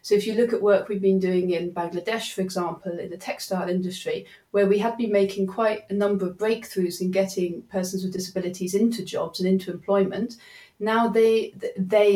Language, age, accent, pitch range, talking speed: English, 30-49, British, 185-210 Hz, 200 wpm